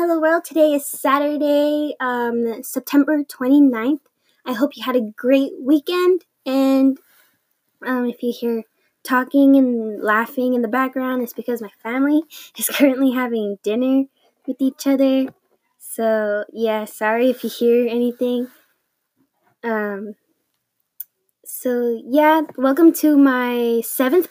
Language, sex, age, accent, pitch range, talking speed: English, female, 10-29, American, 240-285 Hz, 125 wpm